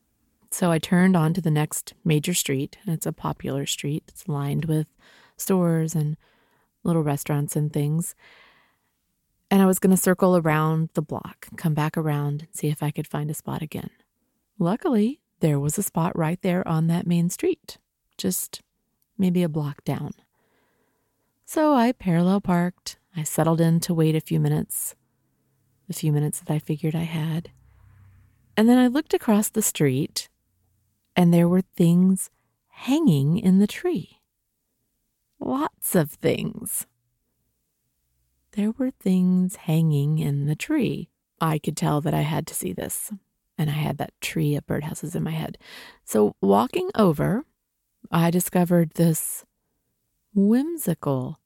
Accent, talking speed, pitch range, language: American, 150 wpm, 150-190 Hz, English